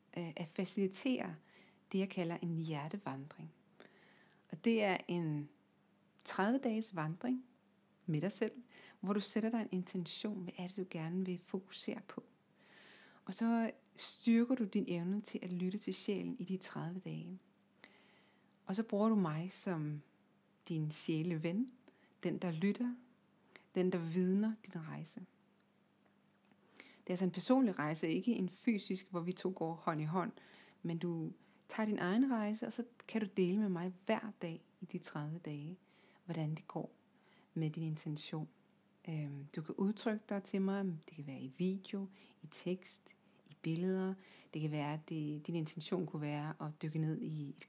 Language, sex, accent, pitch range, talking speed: Danish, female, native, 165-210 Hz, 165 wpm